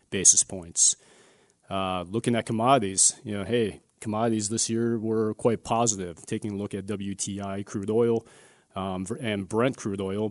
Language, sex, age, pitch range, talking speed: English, male, 30-49, 100-115 Hz, 155 wpm